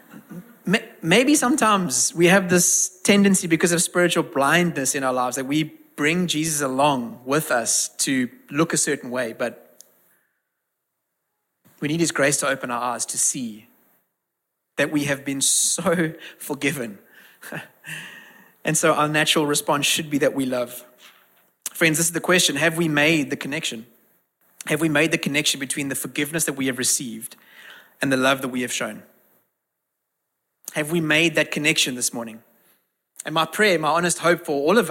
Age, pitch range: 30-49, 135-170 Hz